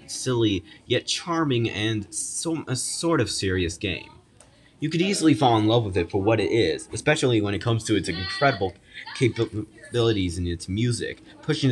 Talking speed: 170 wpm